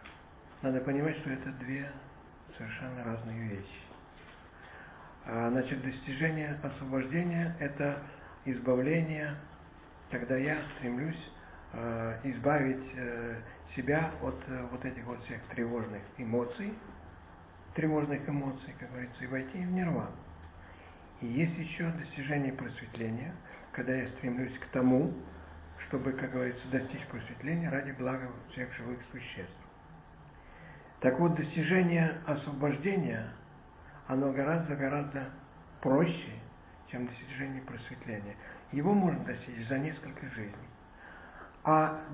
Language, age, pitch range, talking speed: English, 50-69, 115-145 Hz, 100 wpm